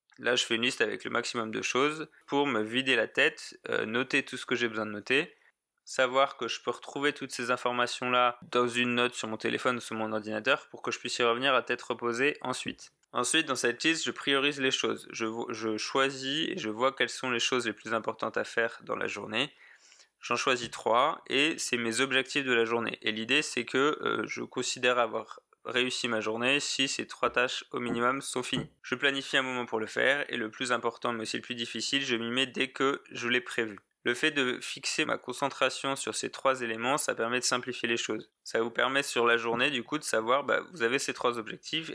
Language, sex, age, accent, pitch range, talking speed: French, male, 20-39, French, 115-135 Hz, 235 wpm